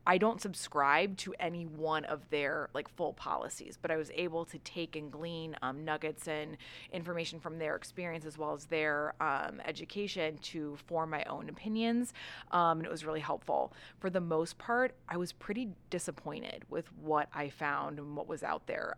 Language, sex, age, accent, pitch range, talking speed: English, female, 20-39, American, 155-175 Hz, 190 wpm